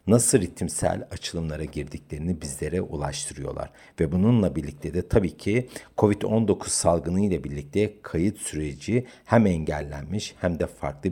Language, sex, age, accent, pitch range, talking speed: Turkish, male, 60-79, native, 75-105 Hz, 125 wpm